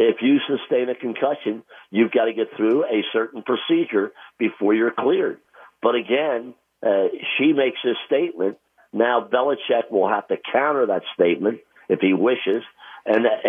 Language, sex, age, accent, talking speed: English, male, 50-69, American, 155 wpm